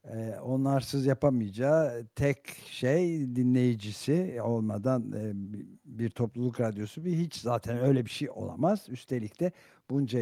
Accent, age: native, 60-79